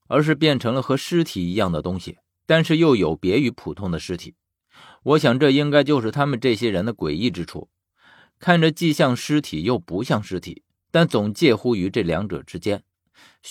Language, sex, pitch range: Chinese, male, 90-145 Hz